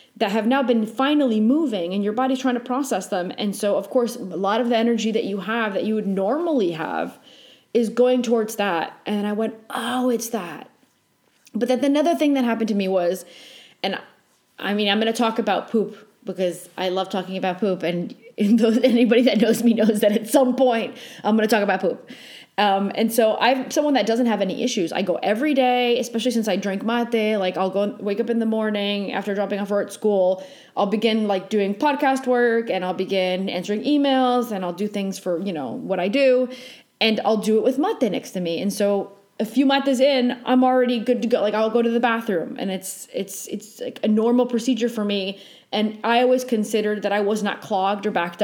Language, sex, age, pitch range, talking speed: English, female, 20-39, 200-245 Hz, 225 wpm